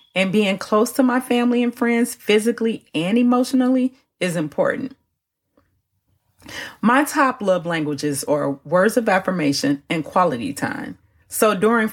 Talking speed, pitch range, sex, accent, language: 130 wpm, 175-245 Hz, female, American, English